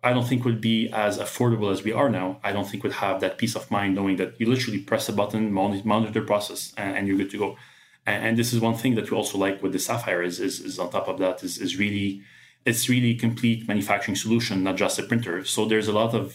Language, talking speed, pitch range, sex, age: English, 270 wpm, 100-120 Hz, male, 30-49